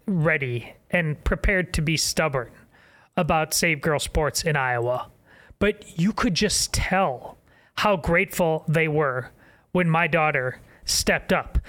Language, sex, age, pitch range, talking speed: English, male, 30-49, 150-190 Hz, 135 wpm